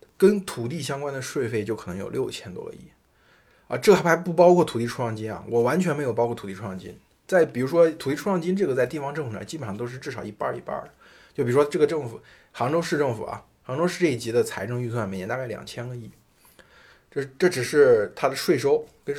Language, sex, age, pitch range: Chinese, male, 20-39, 115-170 Hz